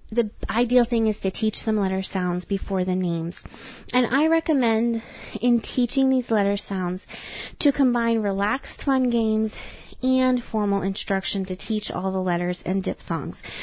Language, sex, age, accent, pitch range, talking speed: English, female, 30-49, American, 190-235 Hz, 155 wpm